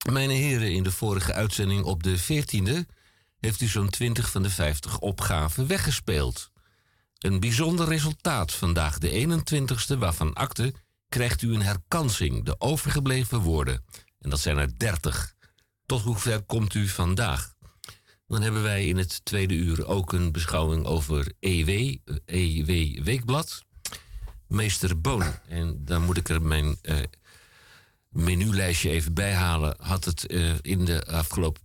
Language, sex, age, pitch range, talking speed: Dutch, male, 50-69, 85-115 Hz, 140 wpm